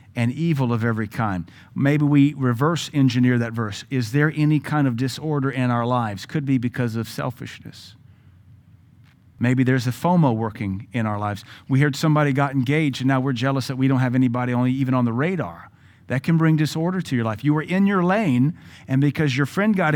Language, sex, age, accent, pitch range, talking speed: English, male, 40-59, American, 120-150 Hz, 205 wpm